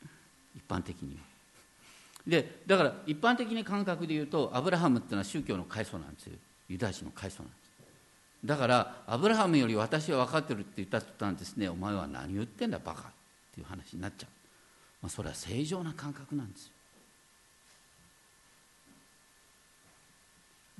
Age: 50-69